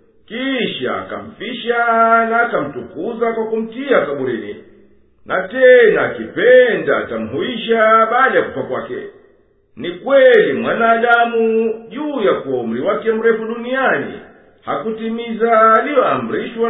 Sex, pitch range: male, 225-250 Hz